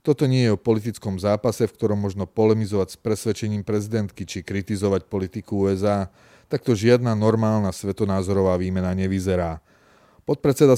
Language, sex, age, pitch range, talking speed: Slovak, male, 30-49, 100-115 Hz, 135 wpm